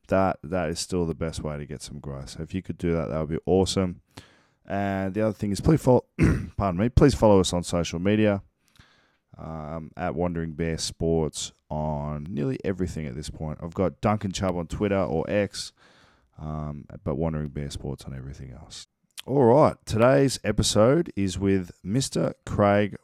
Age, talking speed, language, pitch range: 20-39, 185 wpm, English, 85-100 Hz